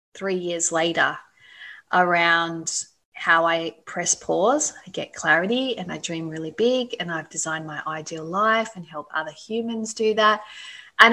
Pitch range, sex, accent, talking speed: 185-235 Hz, female, Australian, 155 wpm